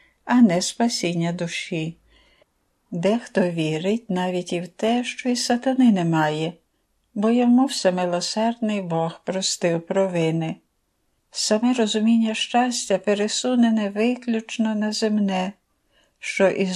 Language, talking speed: Ukrainian, 105 wpm